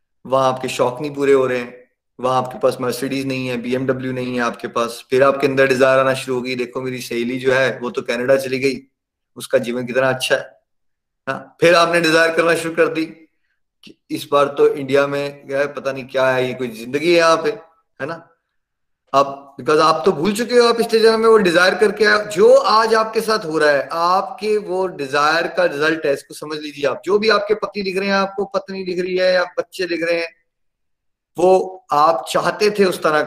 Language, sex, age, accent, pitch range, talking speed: Hindi, male, 30-49, native, 135-180 Hz, 210 wpm